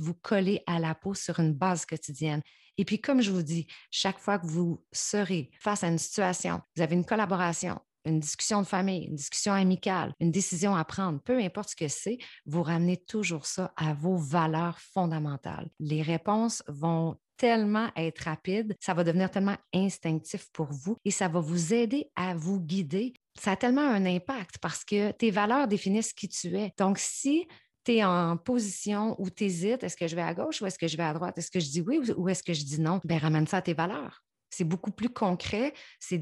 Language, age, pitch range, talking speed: French, 30-49, 160-200 Hz, 215 wpm